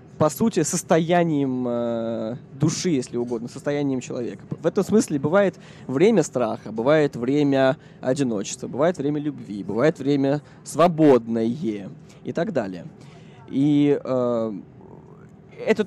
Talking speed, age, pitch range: 110 wpm, 20-39, 130-170 Hz